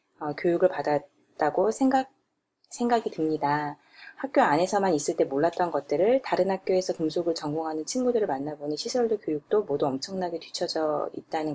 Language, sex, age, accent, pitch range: Korean, female, 20-39, native, 160-240 Hz